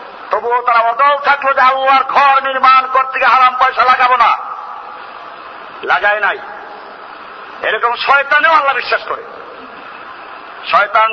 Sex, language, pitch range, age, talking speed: male, Bengali, 235-290 Hz, 50-69, 120 wpm